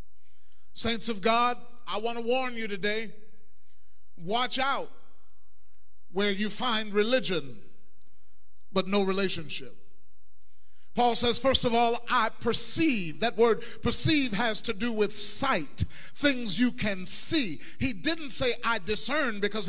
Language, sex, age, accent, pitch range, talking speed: English, male, 40-59, American, 195-245 Hz, 130 wpm